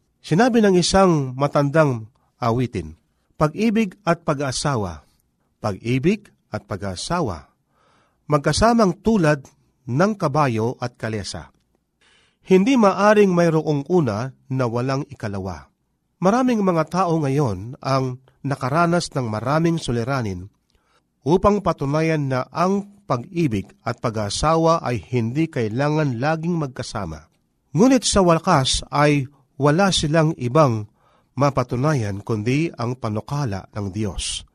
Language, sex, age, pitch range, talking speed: Filipino, male, 50-69, 120-170 Hz, 100 wpm